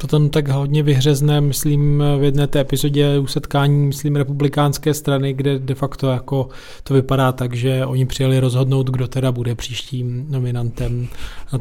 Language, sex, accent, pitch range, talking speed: Czech, male, native, 130-160 Hz, 165 wpm